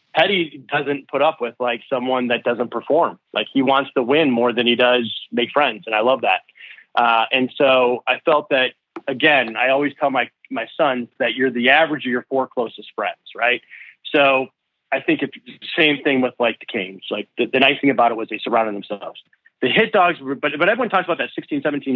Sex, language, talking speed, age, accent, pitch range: male, English, 225 wpm, 30-49, American, 120-155 Hz